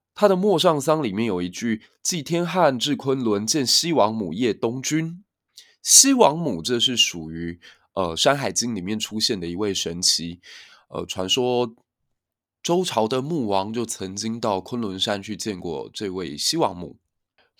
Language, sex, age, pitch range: Chinese, male, 20-39, 100-160 Hz